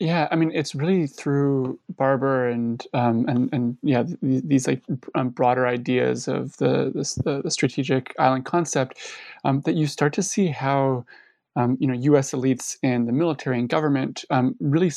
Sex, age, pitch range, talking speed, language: male, 20-39, 125-150 Hz, 175 wpm, English